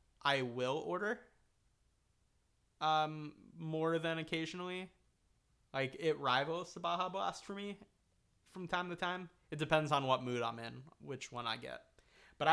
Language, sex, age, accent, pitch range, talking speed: English, male, 20-39, American, 125-150 Hz, 150 wpm